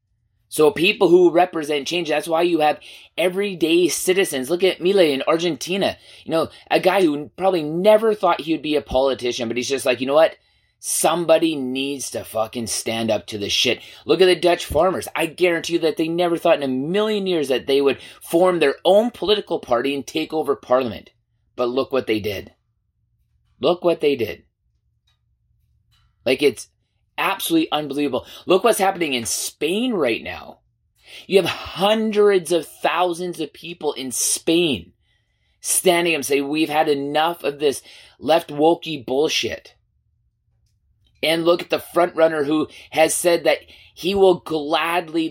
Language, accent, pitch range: English, American, 130-175 Hz